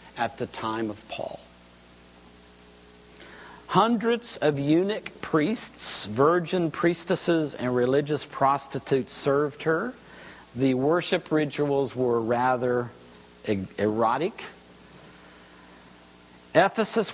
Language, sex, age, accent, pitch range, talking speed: English, male, 50-69, American, 110-160 Hz, 80 wpm